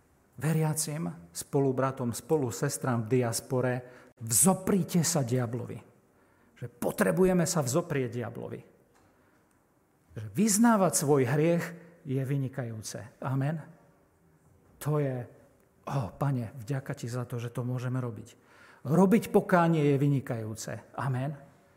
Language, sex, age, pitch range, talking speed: Slovak, male, 50-69, 125-165 Hz, 105 wpm